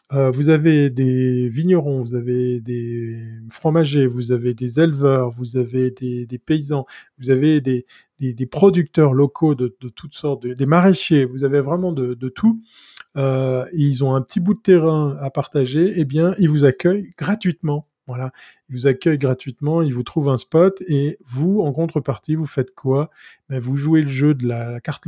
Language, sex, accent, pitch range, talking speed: French, male, French, 130-160 Hz, 190 wpm